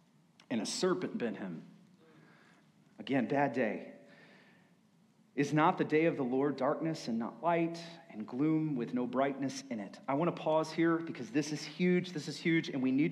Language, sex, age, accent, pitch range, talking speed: English, male, 40-59, American, 140-215 Hz, 190 wpm